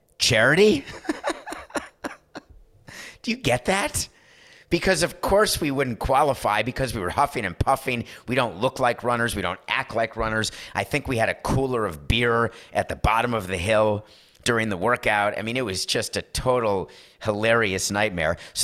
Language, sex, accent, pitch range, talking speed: English, male, American, 95-125 Hz, 175 wpm